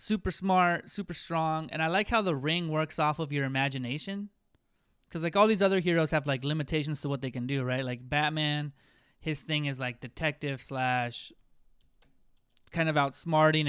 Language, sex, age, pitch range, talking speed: English, male, 30-49, 135-170 Hz, 180 wpm